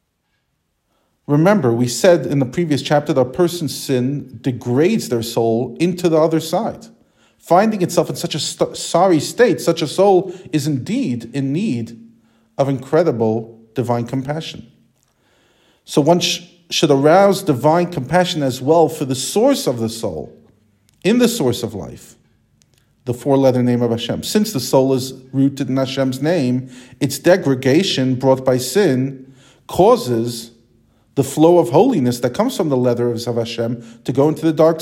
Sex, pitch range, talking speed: male, 125-170 Hz, 155 wpm